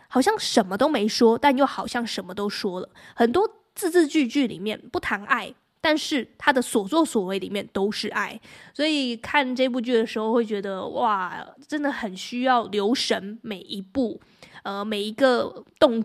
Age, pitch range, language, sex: 20-39, 220-280 Hz, Chinese, female